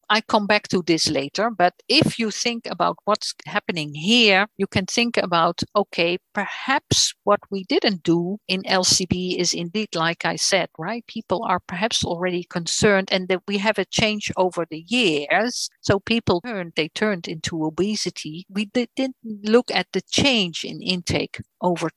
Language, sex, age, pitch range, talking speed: English, female, 50-69, 170-215 Hz, 170 wpm